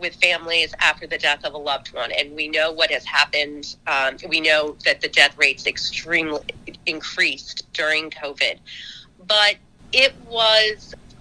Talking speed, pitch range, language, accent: 155 wpm, 150-195 Hz, English, American